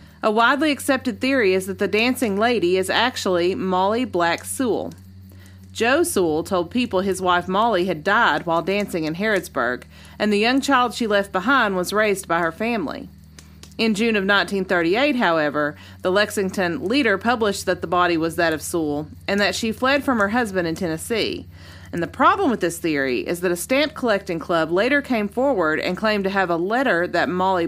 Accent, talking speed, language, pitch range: American, 190 wpm, English, 170-220 Hz